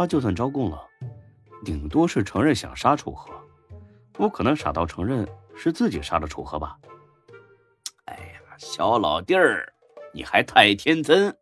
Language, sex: Chinese, male